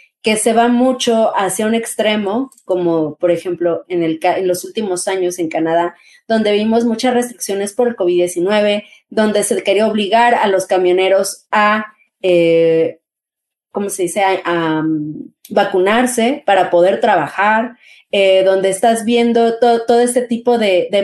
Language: Spanish